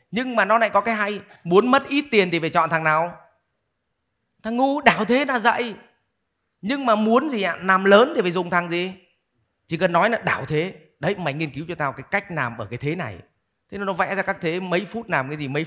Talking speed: 255 wpm